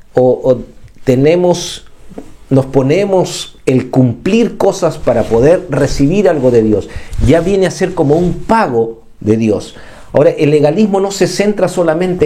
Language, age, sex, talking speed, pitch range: Spanish, 50-69, male, 145 wpm, 115-175 Hz